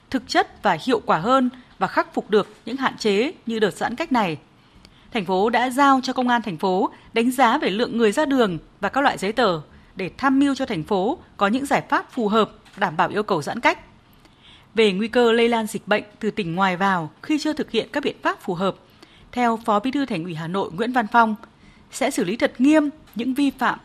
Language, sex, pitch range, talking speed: Vietnamese, female, 205-260 Hz, 240 wpm